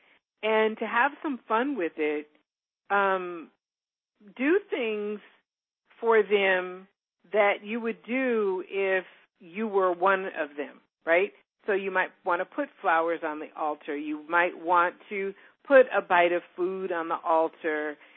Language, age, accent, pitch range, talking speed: English, 50-69, American, 175-220 Hz, 150 wpm